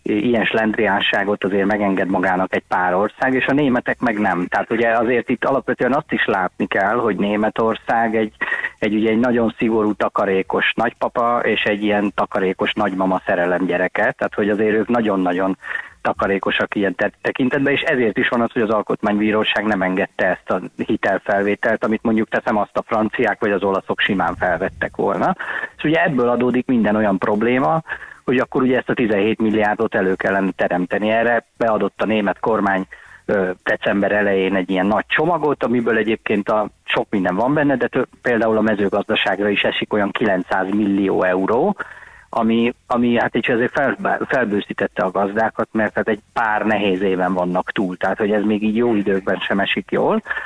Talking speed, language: 170 wpm, Hungarian